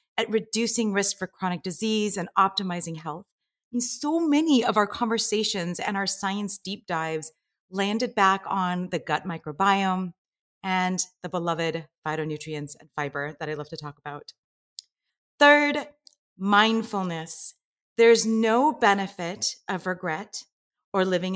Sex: female